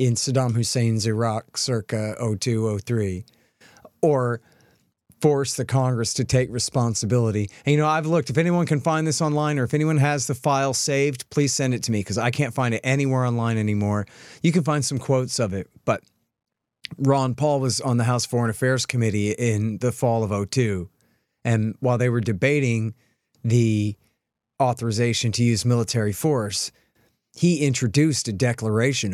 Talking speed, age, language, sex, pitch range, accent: 165 wpm, 40-59, English, male, 110-135 Hz, American